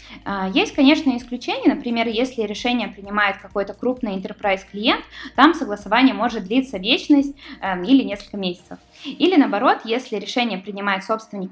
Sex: female